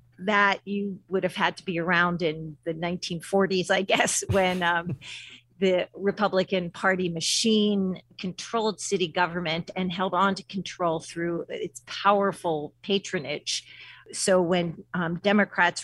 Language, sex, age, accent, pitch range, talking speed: English, female, 40-59, American, 165-195 Hz, 135 wpm